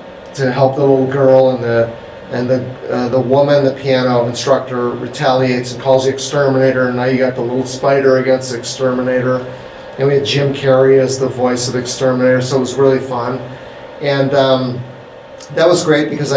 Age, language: 30-49, English